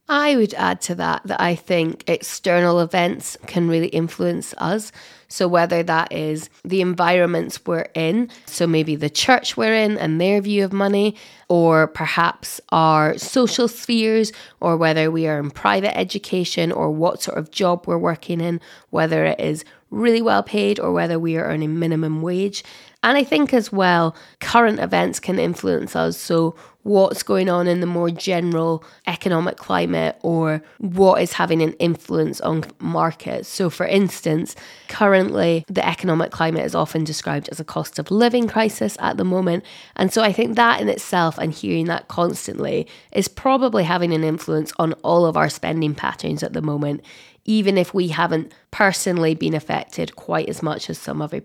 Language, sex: English, female